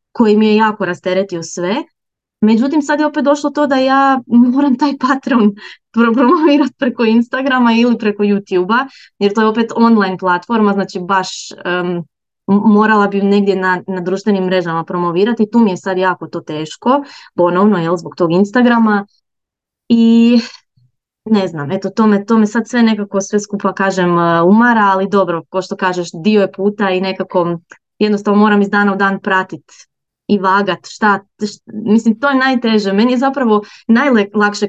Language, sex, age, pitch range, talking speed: Croatian, female, 20-39, 190-235 Hz, 165 wpm